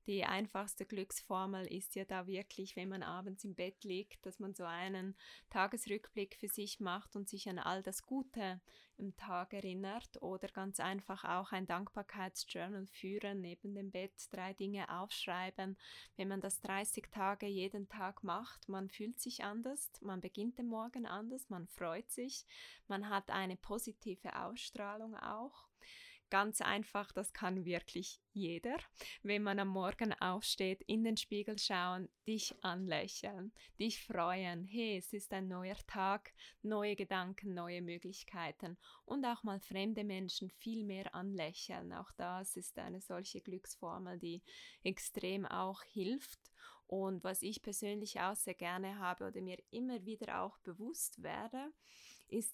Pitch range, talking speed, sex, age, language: 185-210 Hz, 150 wpm, female, 20-39, German